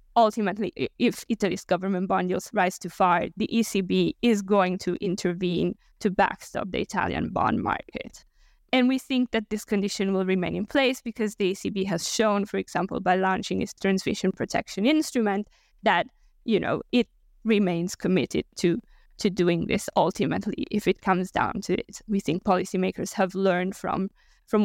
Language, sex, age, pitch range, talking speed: English, female, 20-39, 190-230 Hz, 165 wpm